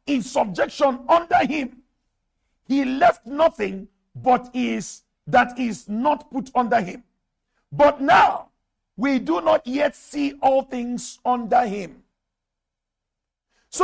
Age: 50-69